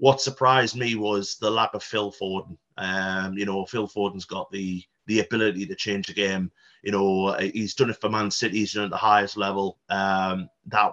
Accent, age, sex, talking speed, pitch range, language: British, 30-49, male, 215 wpm, 100-115 Hz, English